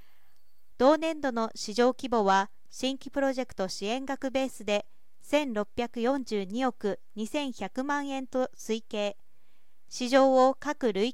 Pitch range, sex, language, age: 225-275 Hz, female, Japanese, 40-59